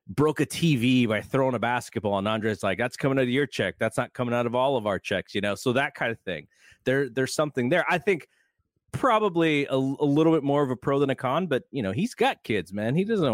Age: 30-49